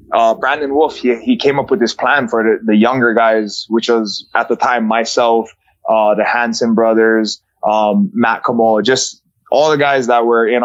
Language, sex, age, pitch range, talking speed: English, male, 20-39, 110-125 Hz, 195 wpm